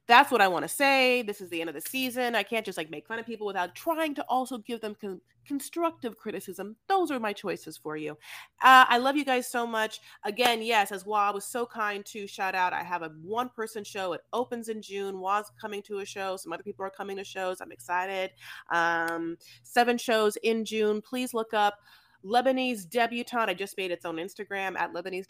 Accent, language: American, English